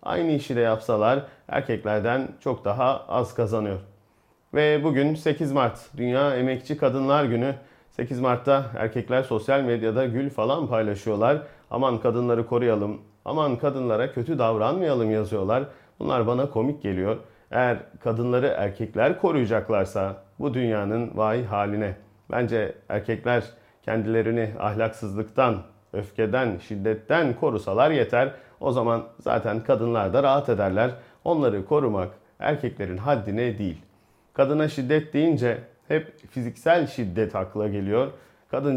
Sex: male